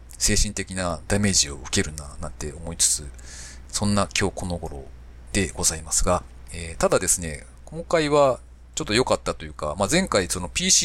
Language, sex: Japanese, male